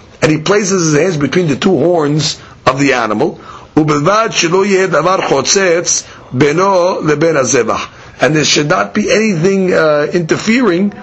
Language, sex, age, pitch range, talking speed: English, male, 50-69, 145-195 Hz, 110 wpm